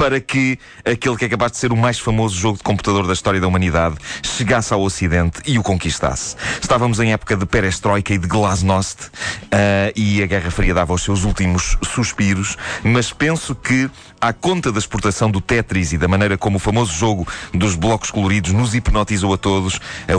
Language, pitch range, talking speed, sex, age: Portuguese, 90-115 Hz, 195 wpm, male, 30-49